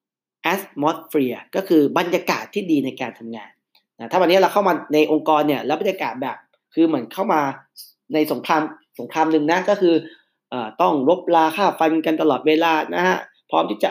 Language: Thai